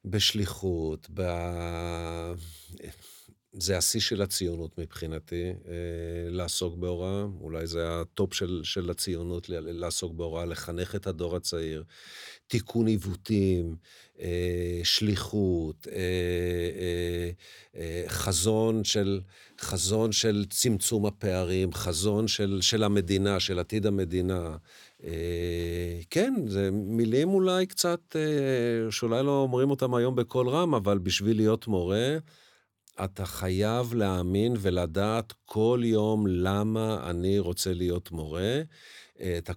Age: 50-69